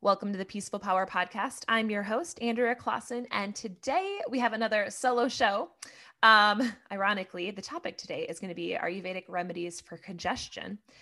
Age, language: 20-39, English